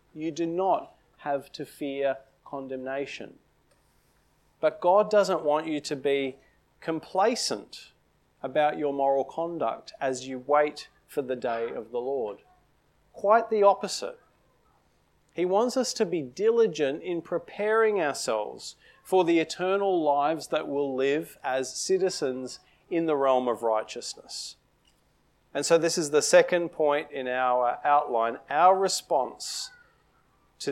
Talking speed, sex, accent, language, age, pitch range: 130 wpm, male, Australian, English, 40-59, 135-180 Hz